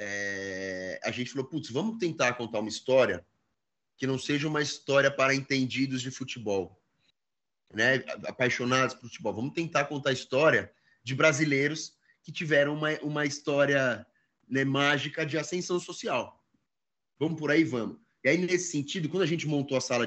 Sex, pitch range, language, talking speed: male, 135-160 Hz, Portuguese, 160 wpm